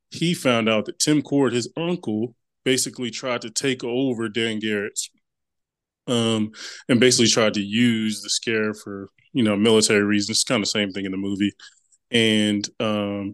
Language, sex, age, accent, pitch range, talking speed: English, male, 20-39, American, 105-125 Hz, 175 wpm